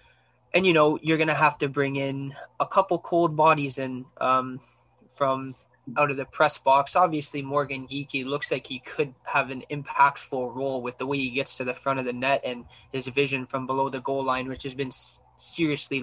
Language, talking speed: English, 205 wpm